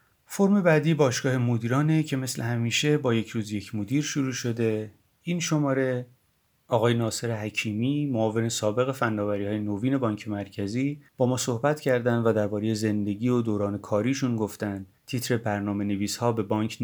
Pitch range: 105-130 Hz